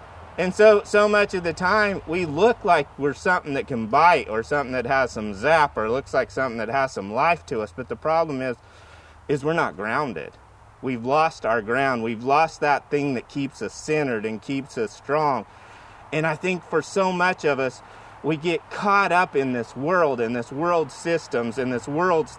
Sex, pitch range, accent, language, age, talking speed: male, 140-205 Hz, American, English, 30-49, 205 wpm